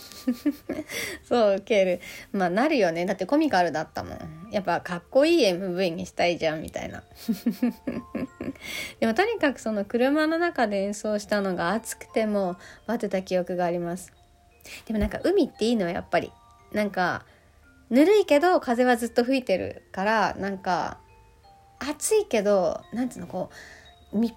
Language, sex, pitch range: Japanese, female, 180-270 Hz